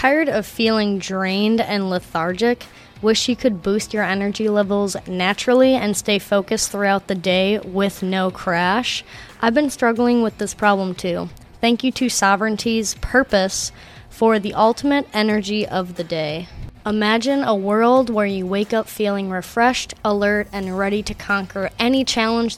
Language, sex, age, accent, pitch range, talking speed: English, female, 20-39, American, 195-235 Hz, 155 wpm